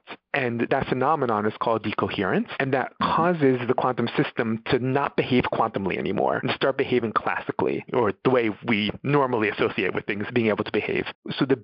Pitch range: 110-135 Hz